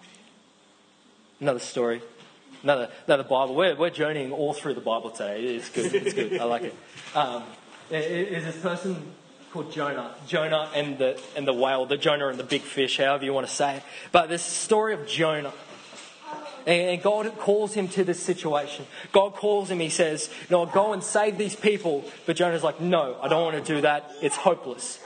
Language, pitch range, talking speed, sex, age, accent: English, 150-200 Hz, 200 wpm, male, 20-39, Australian